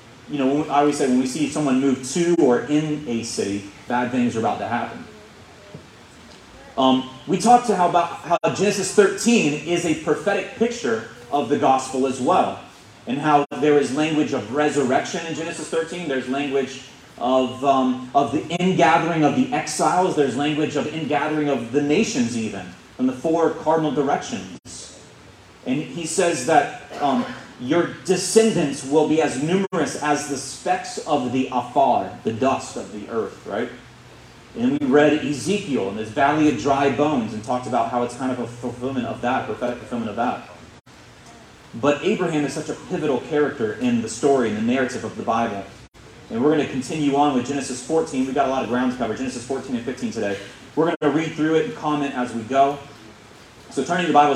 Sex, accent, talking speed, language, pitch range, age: male, American, 190 wpm, English, 130-165 Hz, 30-49